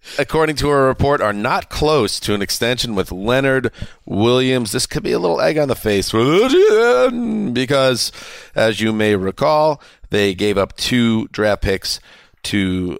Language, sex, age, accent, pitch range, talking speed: English, male, 40-59, American, 100-130 Hz, 155 wpm